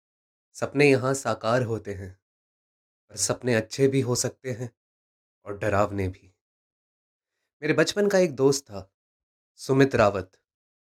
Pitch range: 100-140 Hz